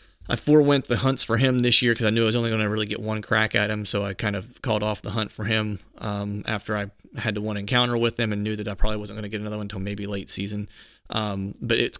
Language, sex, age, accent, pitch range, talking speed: English, male, 30-49, American, 105-115 Hz, 295 wpm